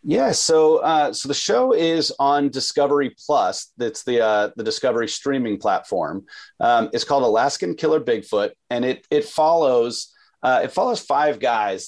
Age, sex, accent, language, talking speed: 30-49, male, American, English, 160 wpm